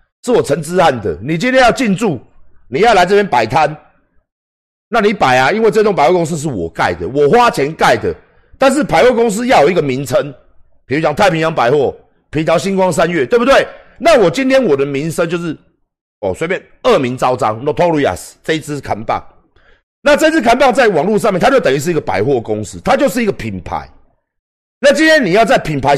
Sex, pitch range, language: male, 130-210 Hz, Chinese